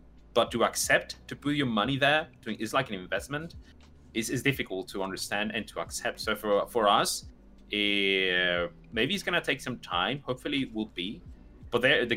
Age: 30-49